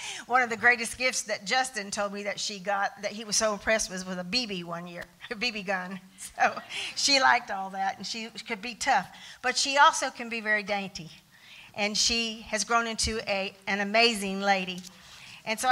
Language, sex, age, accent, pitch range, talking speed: English, female, 50-69, American, 190-230 Hz, 205 wpm